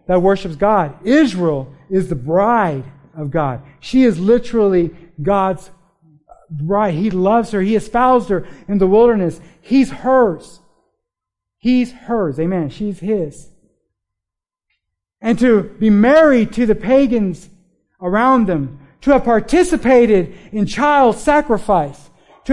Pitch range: 190-270 Hz